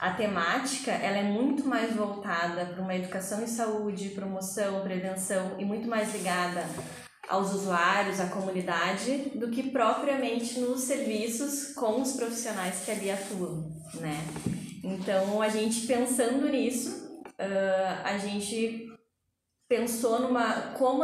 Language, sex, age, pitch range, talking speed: Portuguese, female, 10-29, 190-235 Hz, 125 wpm